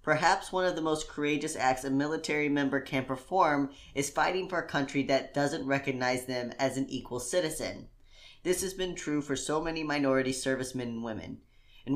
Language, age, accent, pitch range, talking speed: English, 10-29, American, 130-155 Hz, 185 wpm